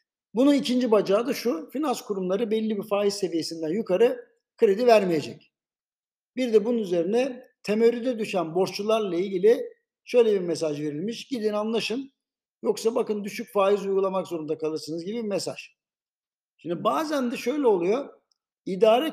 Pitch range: 185-240 Hz